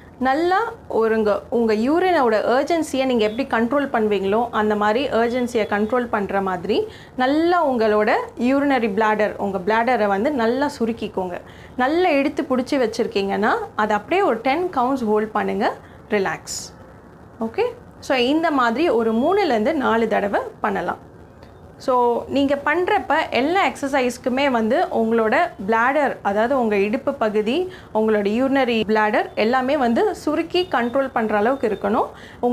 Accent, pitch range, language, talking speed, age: Indian, 220-275 Hz, English, 95 wpm, 20-39